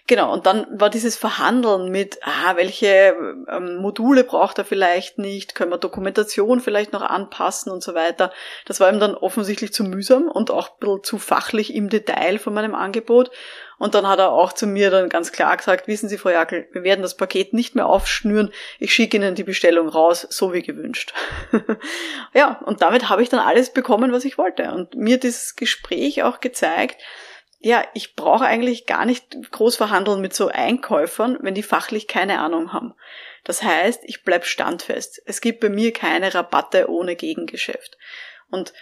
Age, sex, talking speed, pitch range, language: 20-39, female, 185 wpm, 190-230 Hz, German